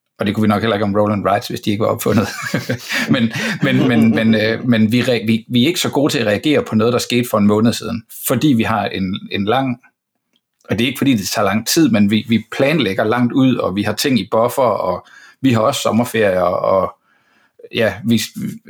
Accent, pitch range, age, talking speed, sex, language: native, 105-125 Hz, 60-79, 215 wpm, male, Danish